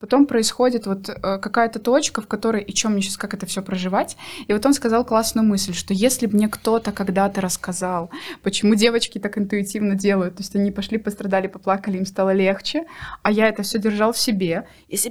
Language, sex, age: Russian, female, 20-39